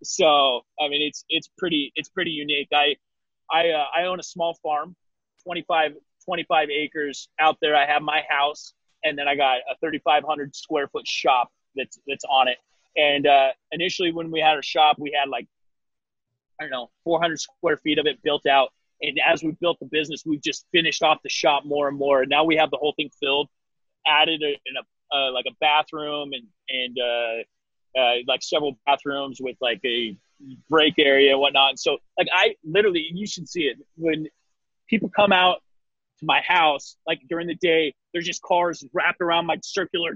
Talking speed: 195 wpm